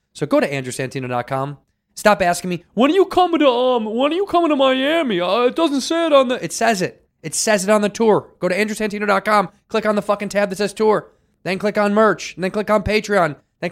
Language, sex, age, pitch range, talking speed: English, male, 20-39, 150-195 Hz, 245 wpm